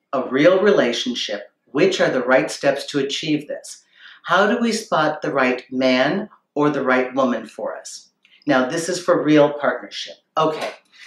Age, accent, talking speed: 50-69, American, 170 wpm